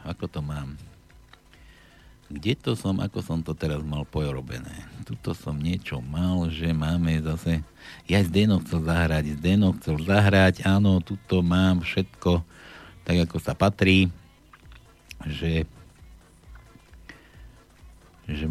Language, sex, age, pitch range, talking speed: Slovak, male, 60-79, 80-100 Hz, 120 wpm